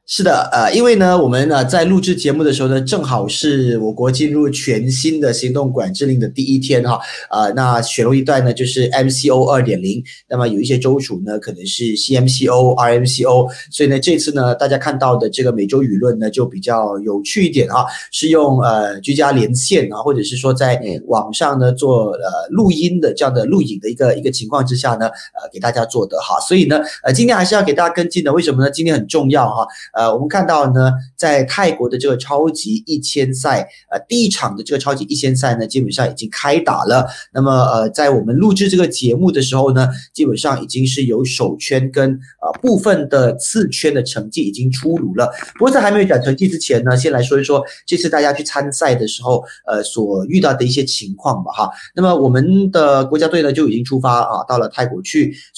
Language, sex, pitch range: Chinese, male, 125-150 Hz